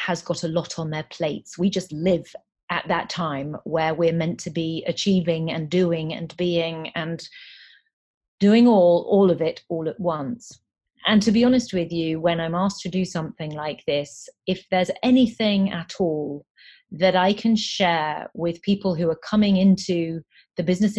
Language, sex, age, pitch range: English, female, 30-49, 160-185 Hz